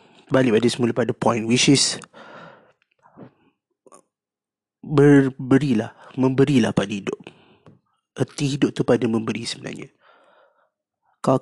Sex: male